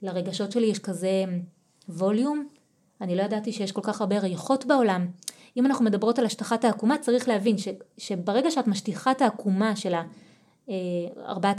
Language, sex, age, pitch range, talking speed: Hebrew, female, 20-39, 185-235 Hz, 155 wpm